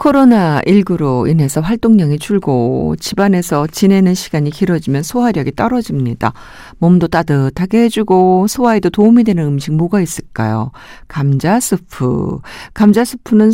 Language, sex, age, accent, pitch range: Korean, female, 50-69, native, 150-215 Hz